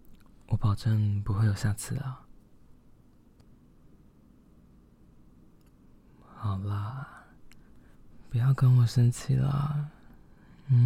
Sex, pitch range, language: male, 105-125 Hz, Chinese